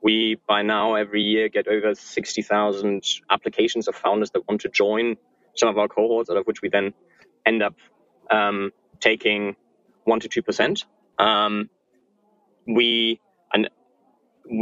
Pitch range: 105-130 Hz